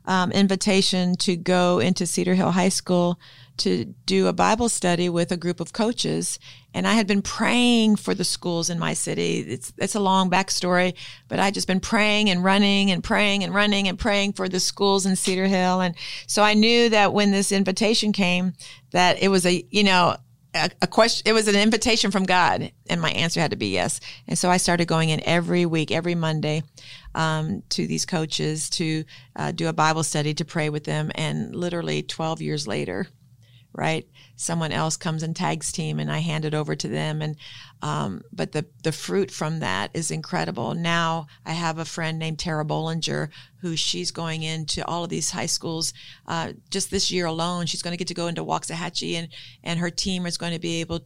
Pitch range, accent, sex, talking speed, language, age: 155-185 Hz, American, female, 205 wpm, English, 40-59